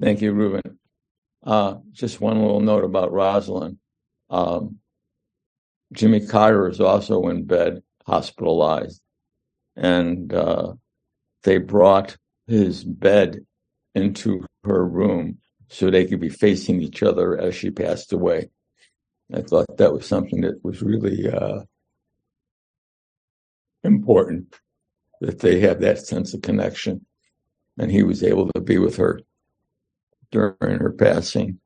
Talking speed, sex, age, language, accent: 125 wpm, male, 60-79, English, American